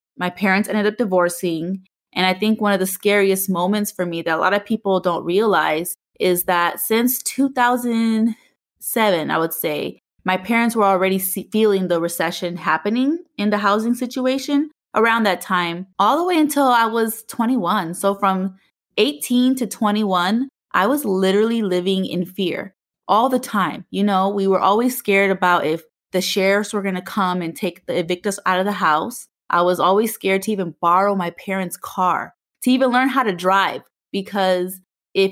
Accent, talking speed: American, 180 wpm